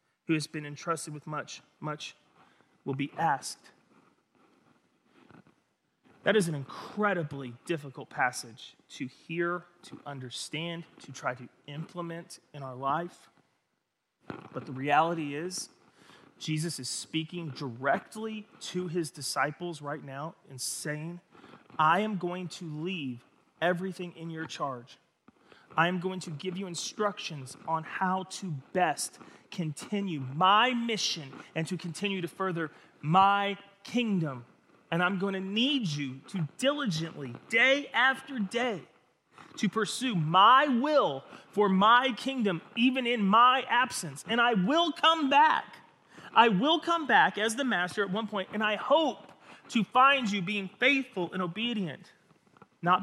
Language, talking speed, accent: English, 135 wpm, American